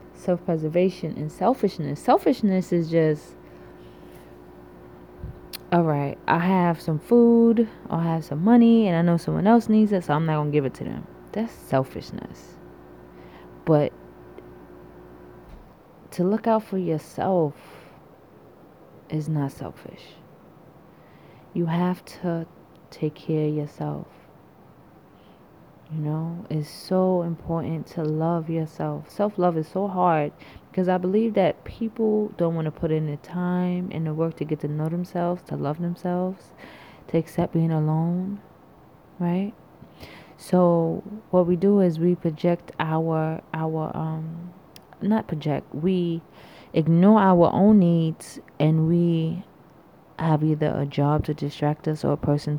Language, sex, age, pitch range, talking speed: English, female, 20-39, 150-180 Hz, 135 wpm